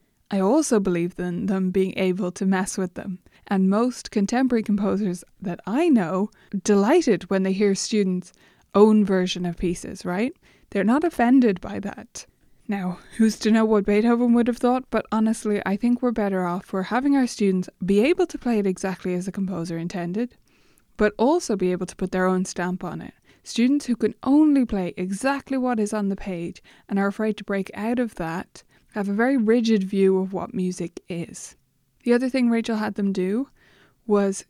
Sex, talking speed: female, 195 wpm